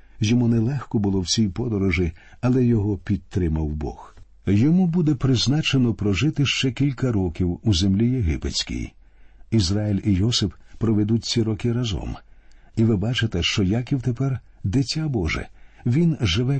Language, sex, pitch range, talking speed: Ukrainian, male, 95-130 Hz, 135 wpm